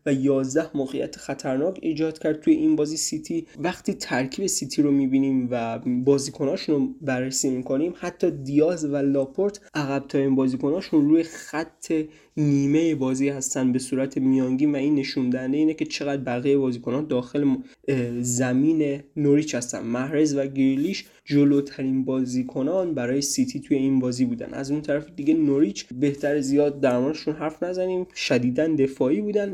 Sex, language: male, Persian